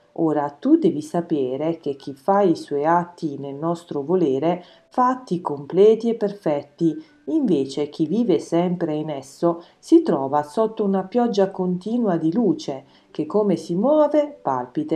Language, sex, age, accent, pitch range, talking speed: Italian, female, 40-59, native, 150-210 Hz, 145 wpm